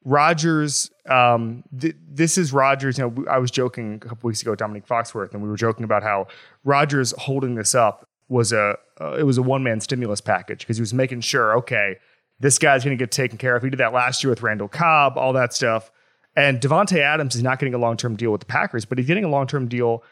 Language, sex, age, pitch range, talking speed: English, male, 30-49, 115-145 Hz, 240 wpm